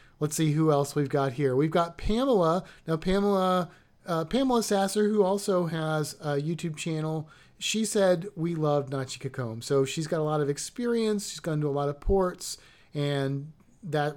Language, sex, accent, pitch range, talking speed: English, male, American, 145-195 Hz, 180 wpm